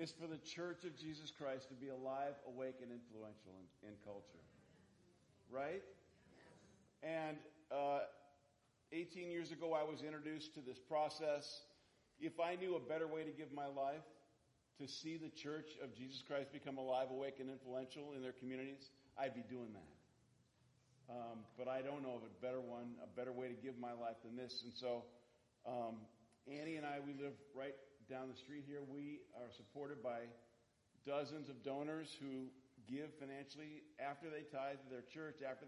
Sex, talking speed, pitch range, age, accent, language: male, 175 wpm, 120-145 Hz, 50-69, American, English